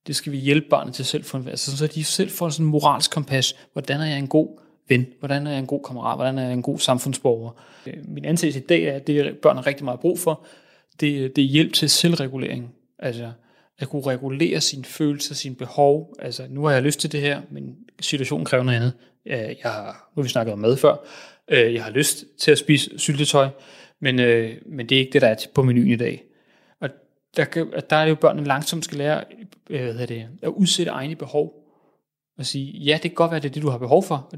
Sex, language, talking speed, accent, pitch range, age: male, Danish, 225 wpm, native, 130-150 Hz, 30-49